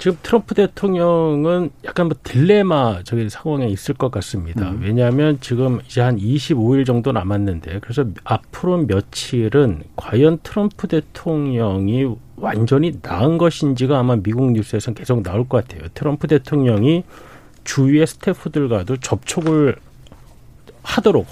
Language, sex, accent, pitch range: Korean, male, native, 110-160 Hz